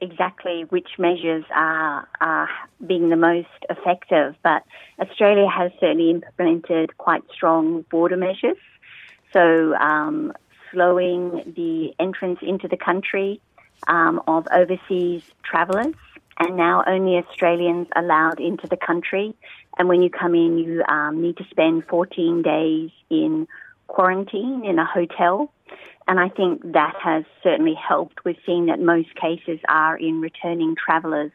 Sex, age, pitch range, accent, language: female, 30-49, 165-190 Hz, Australian, Korean